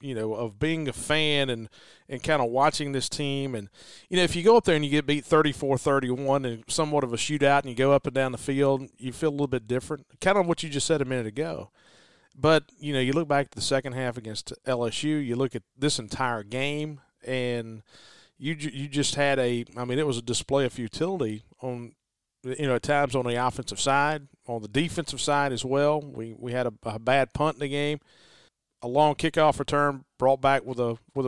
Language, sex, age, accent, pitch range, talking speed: English, male, 40-59, American, 125-150 Hz, 230 wpm